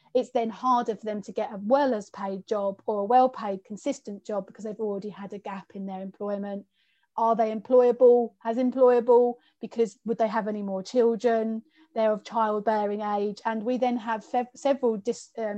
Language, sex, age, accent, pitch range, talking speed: English, female, 30-49, British, 215-255 Hz, 190 wpm